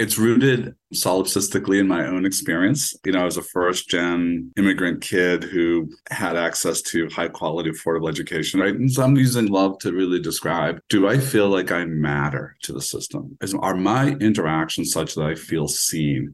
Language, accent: English, American